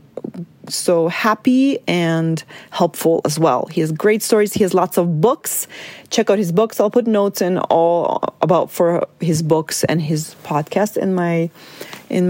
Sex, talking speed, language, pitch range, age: female, 165 wpm, English, 170-215 Hz, 30-49